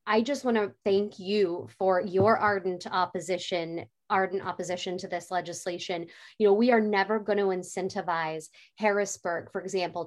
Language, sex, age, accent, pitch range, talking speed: English, female, 20-39, American, 180-210 Hz, 150 wpm